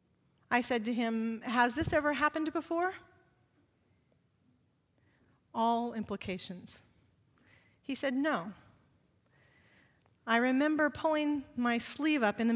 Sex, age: female, 40-59